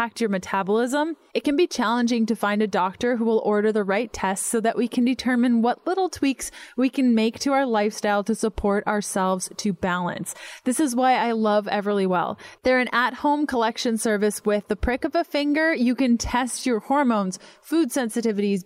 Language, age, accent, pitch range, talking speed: English, 20-39, American, 210-265 Hz, 195 wpm